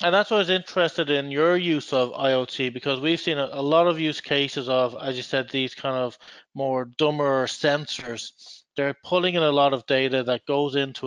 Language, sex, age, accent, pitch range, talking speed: English, male, 30-49, Irish, 130-160 Hz, 215 wpm